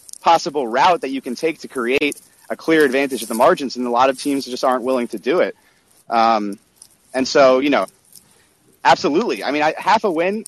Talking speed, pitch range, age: 210 wpm, 125-145 Hz, 30-49